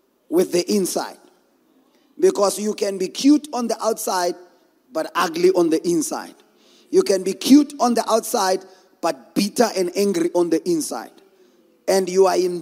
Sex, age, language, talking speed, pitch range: male, 30-49, English, 160 wpm, 185-295 Hz